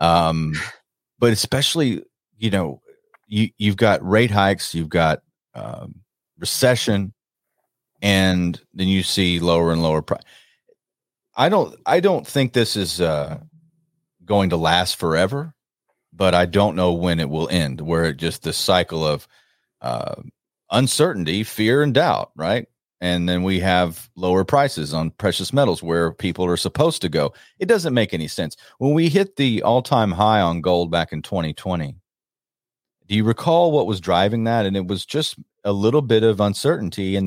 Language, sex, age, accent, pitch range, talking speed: English, male, 40-59, American, 90-115 Hz, 165 wpm